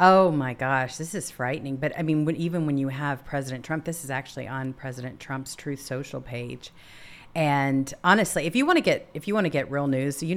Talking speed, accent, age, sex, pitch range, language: 225 wpm, American, 40-59, female, 135-190 Hz, English